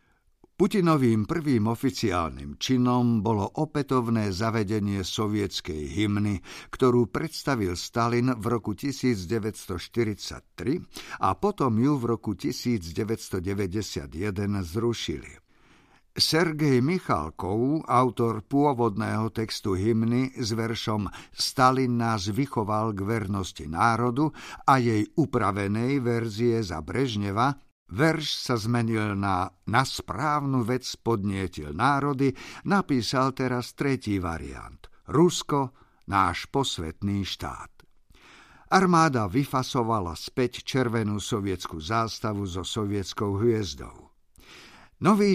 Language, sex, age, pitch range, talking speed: Slovak, male, 50-69, 100-130 Hz, 95 wpm